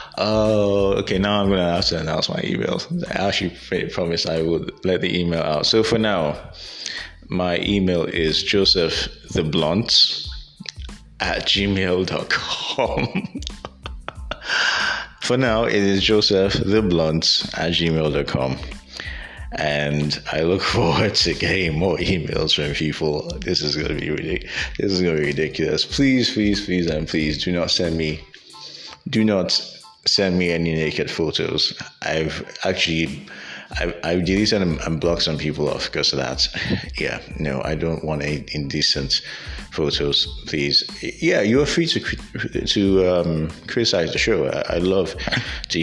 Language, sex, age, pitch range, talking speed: English, male, 20-39, 75-100 Hz, 135 wpm